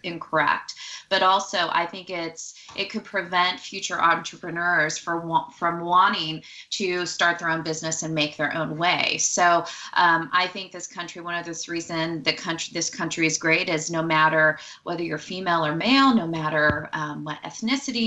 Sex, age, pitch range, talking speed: female, 20-39, 160-190 Hz, 175 wpm